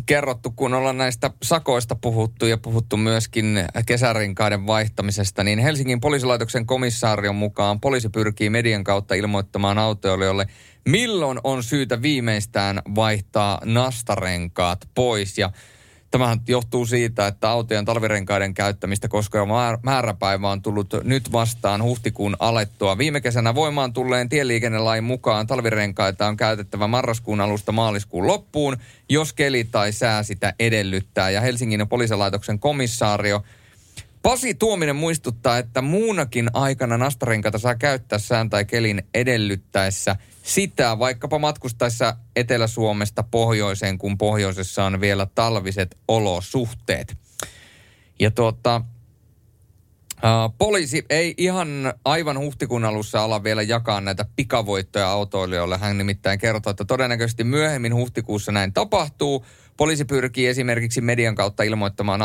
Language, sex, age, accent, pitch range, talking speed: Finnish, male, 30-49, native, 100-125 Hz, 115 wpm